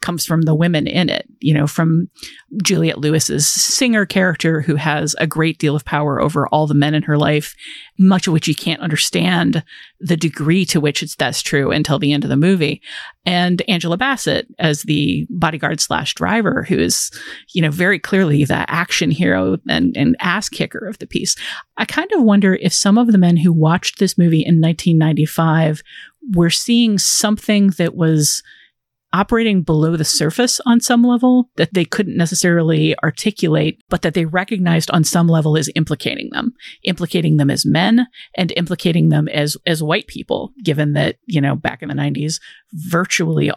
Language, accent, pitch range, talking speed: English, American, 155-190 Hz, 180 wpm